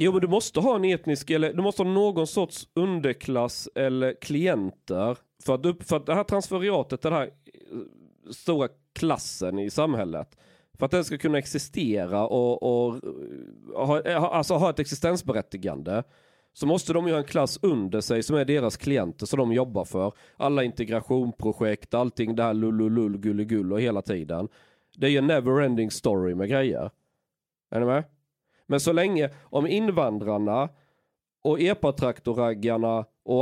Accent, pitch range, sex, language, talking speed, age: native, 115-170 Hz, male, Swedish, 155 wpm, 30-49